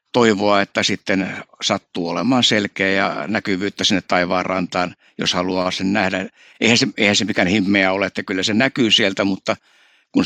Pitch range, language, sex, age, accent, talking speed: 100-125 Hz, Finnish, male, 60-79, native, 170 wpm